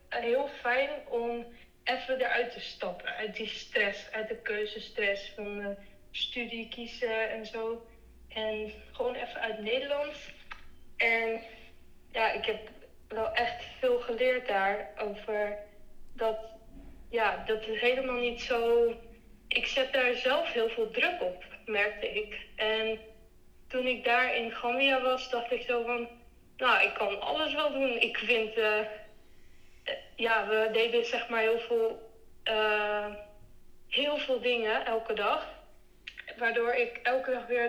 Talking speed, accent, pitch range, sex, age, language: 140 wpm, Dutch, 220-245 Hz, female, 20-39, Dutch